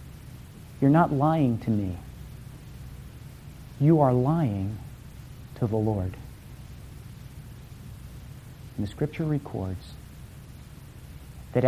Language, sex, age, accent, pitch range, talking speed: English, male, 50-69, American, 105-135 Hz, 80 wpm